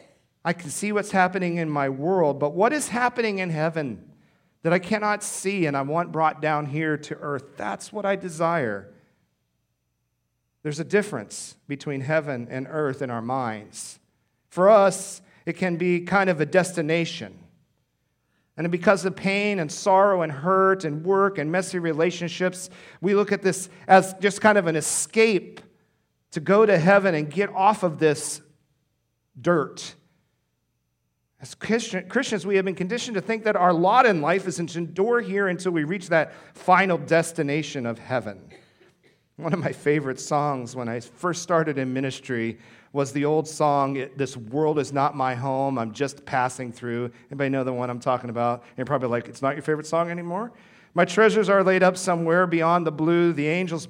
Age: 50-69